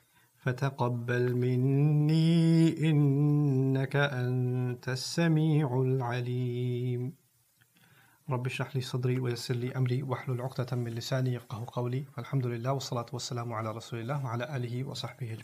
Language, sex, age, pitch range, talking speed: English, male, 30-49, 125-145 Hz, 95 wpm